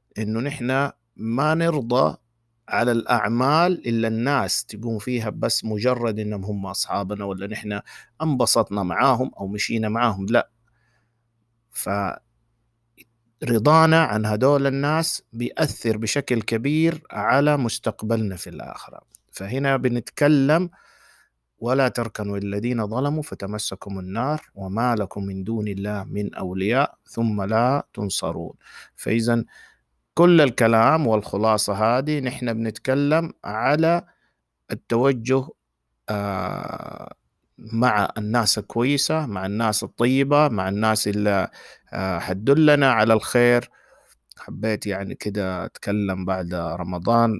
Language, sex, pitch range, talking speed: Arabic, male, 100-125 Hz, 100 wpm